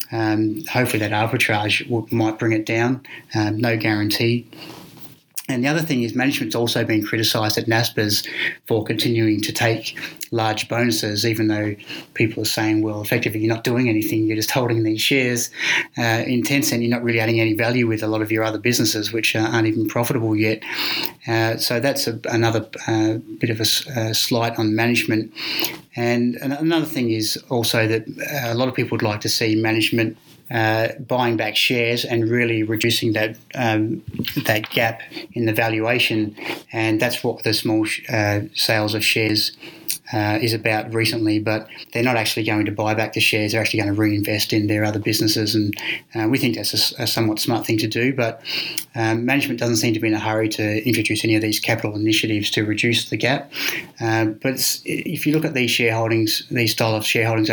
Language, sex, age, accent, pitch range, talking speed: English, male, 30-49, Australian, 110-120 Hz, 195 wpm